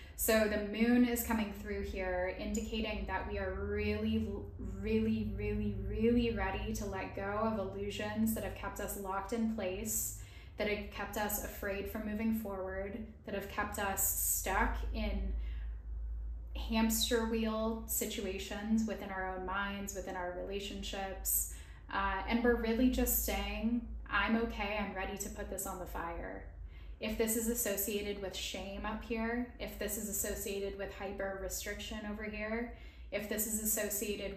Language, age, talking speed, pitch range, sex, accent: English, 10-29, 155 wpm, 185-220 Hz, female, American